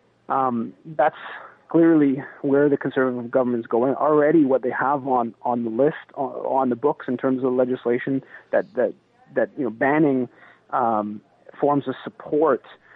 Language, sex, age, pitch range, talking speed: English, male, 30-49, 120-140 Hz, 160 wpm